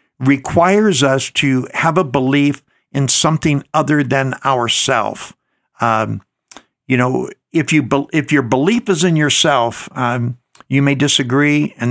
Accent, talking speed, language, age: American, 130 wpm, English, 60-79